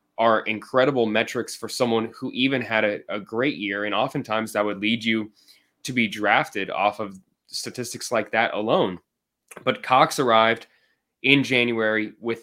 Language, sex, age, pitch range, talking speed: English, male, 20-39, 105-120 Hz, 160 wpm